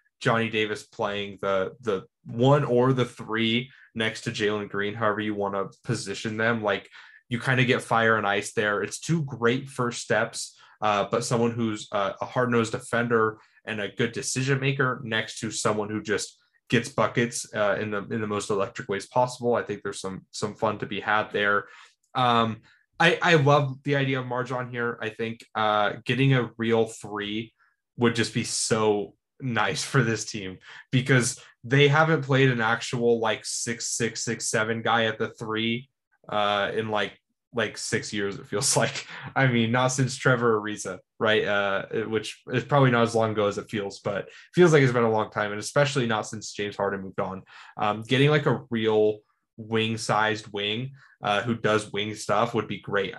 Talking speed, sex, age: 195 wpm, male, 10-29